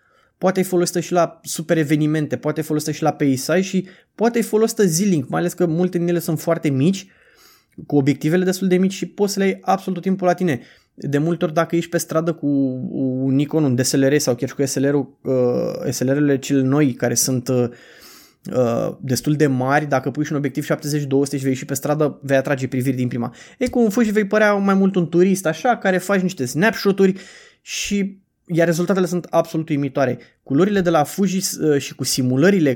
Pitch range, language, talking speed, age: 135-180 Hz, Romanian, 200 wpm, 20-39